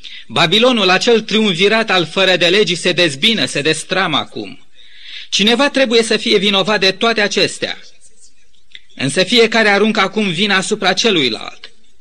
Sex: male